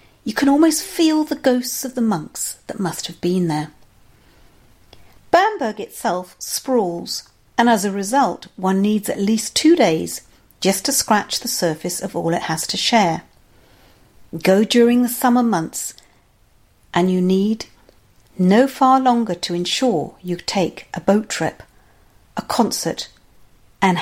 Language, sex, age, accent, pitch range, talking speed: English, female, 50-69, British, 180-245 Hz, 145 wpm